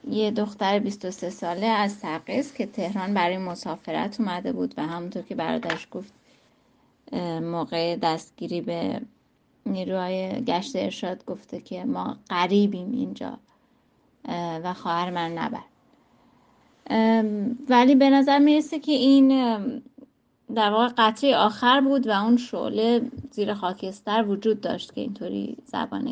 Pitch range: 190-245 Hz